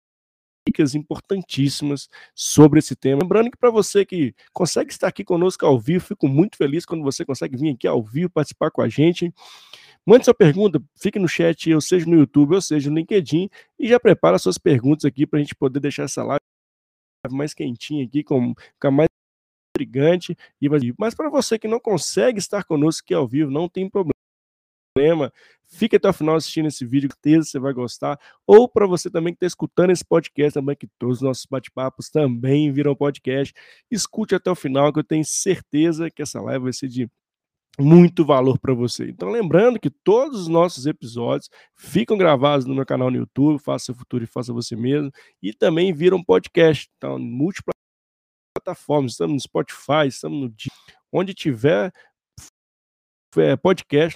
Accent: Brazilian